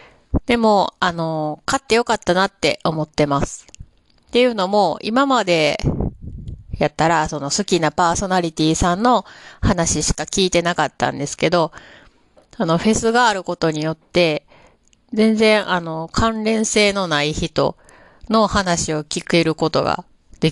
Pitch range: 160-215 Hz